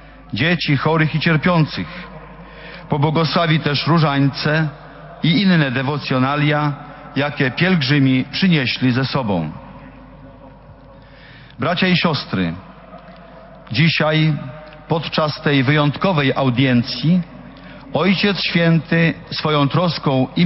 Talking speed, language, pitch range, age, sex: 80 wpm, Slovak, 135-170 Hz, 50-69, male